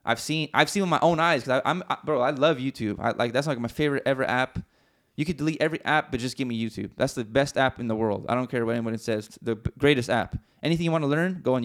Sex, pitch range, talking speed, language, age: male, 120-155 Hz, 295 wpm, English, 20-39